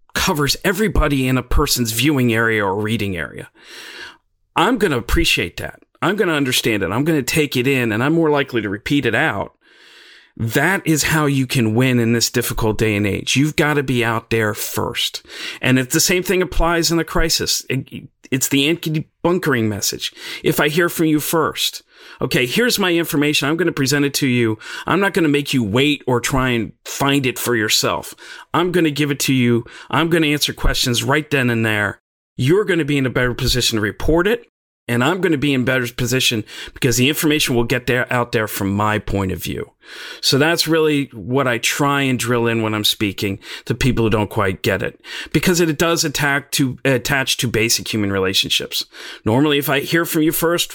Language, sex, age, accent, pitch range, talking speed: English, male, 40-59, American, 115-155 Hz, 210 wpm